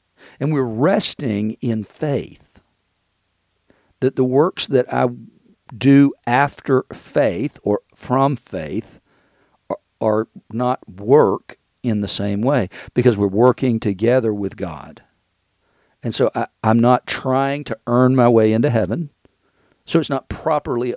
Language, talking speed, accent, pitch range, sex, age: English, 130 wpm, American, 105-130 Hz, male, 50-69